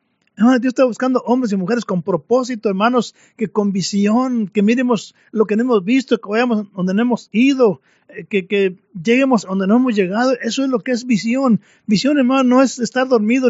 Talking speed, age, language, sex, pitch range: 195 wpm, 40-59, Spanish, male, 200-245 Hz